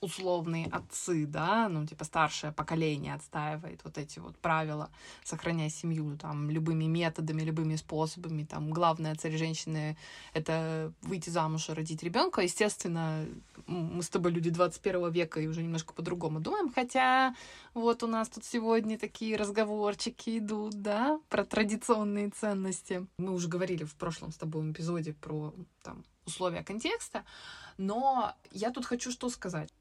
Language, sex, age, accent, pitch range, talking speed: Russian, female, 20-39, native, 160-210 Hz, 145 wpm